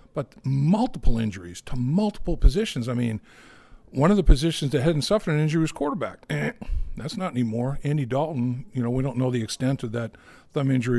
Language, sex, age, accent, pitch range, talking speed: English, male, 50-69, American, 120-160 Hz, 195 wpm